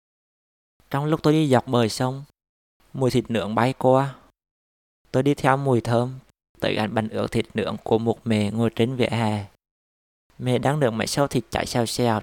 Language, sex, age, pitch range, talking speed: Vietnamese, male, 20-39, 110-130 Hz, 190 wpm